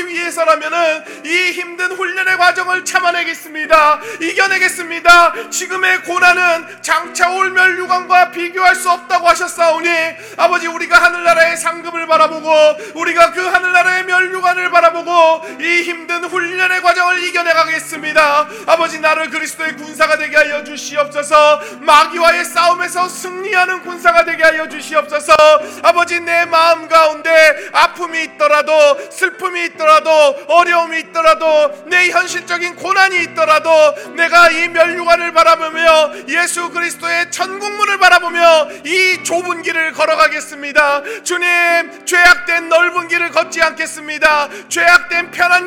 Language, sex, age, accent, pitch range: Korean, male, 40-59, native, 315-355 Hz